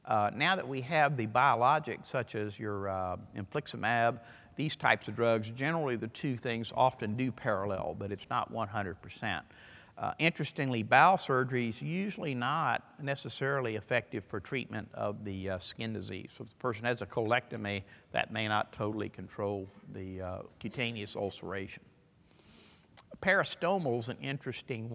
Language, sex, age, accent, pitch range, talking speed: English, male, 50-69, American, 100-125 Hz, 150 wpm